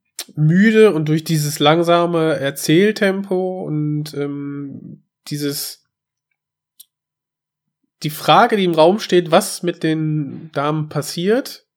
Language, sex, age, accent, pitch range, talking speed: German, male, 20-39, German, 140-175 Hz, 100 wpm